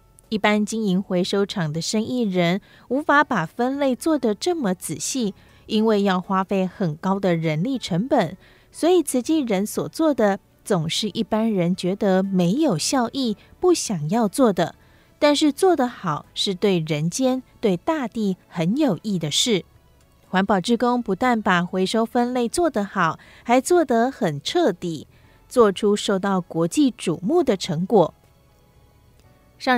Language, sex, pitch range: Chinese, female, 185-245 Hz